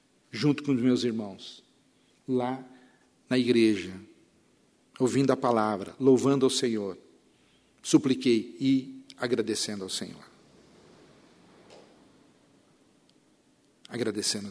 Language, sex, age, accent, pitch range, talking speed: Portuguese, male, 60-79, Brazilian, 115-135 Hz, 85 wpm